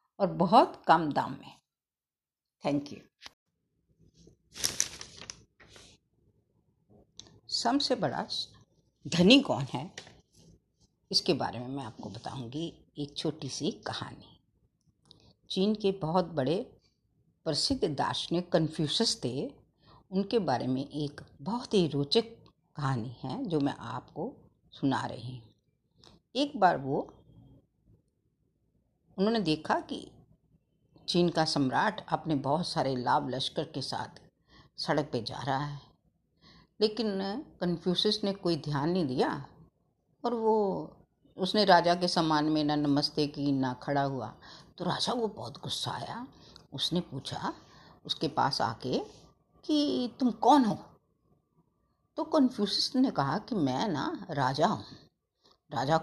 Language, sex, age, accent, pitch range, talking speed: Hindi, female, 50-69, native, 140-195 Hz, 120 wpm